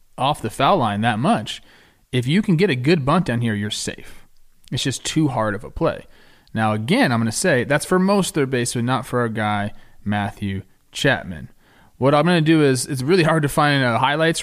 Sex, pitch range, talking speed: male, 115-155 Hz, 220 wpm